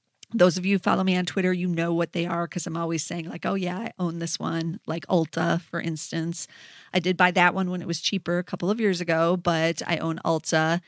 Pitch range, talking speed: 165-185 Hz, 255 wpm